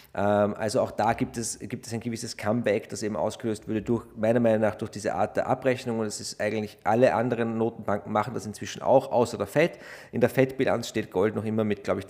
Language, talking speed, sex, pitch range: German, 235 wpm, male, 110-130 Hz